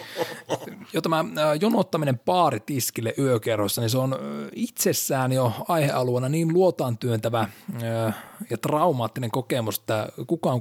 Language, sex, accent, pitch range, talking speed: Finnish, male, native, 110-155 Hz, 105 wpm